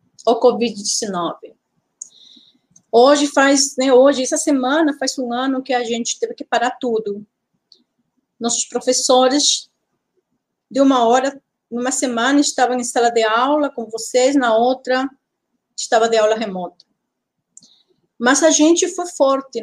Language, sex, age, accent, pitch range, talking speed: Portuguese, female, 30-49, Brazilian, 225-275 Hz, 130 wpm